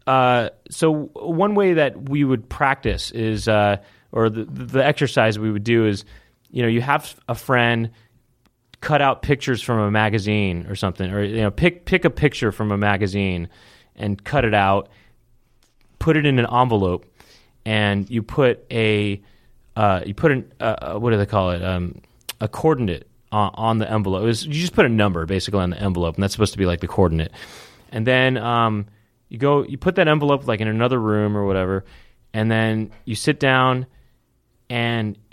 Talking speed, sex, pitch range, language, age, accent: 190 wpm, male, 105-130 Hz, English, 30-49, American